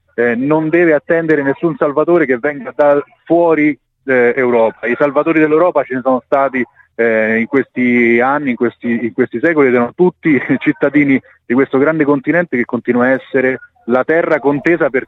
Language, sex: Italian, male